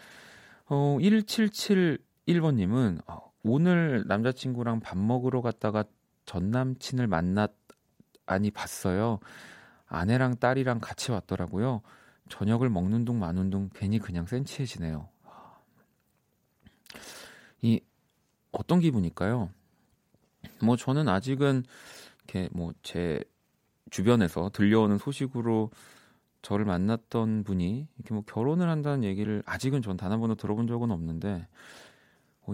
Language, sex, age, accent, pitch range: Korean, male, 40-59, native, 95-130 Hz